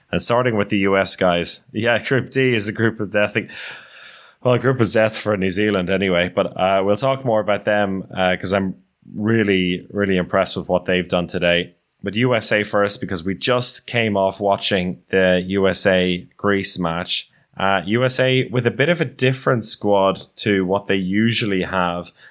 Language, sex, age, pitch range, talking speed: English, male, 20-39, 90-115 Hz, 185 wpm